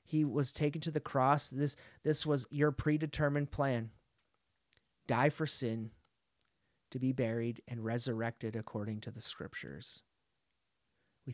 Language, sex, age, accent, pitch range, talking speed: English, male, 30-49, American, 115-140 Hz, 130 wpm